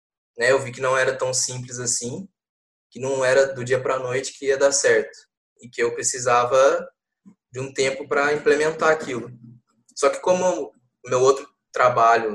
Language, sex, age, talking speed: Portuguese, male, 20-39, 170 wpm